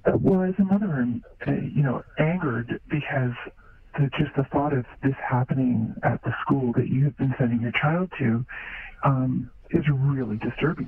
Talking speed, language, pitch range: 160 wpm, English, 125-150 Hz